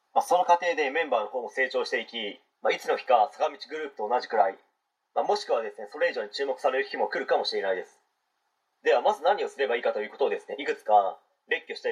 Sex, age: male, 40-59